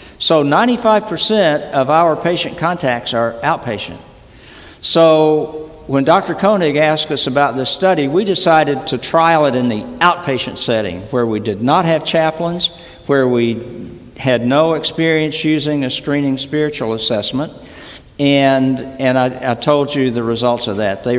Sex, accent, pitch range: male, American, 115-155 Hz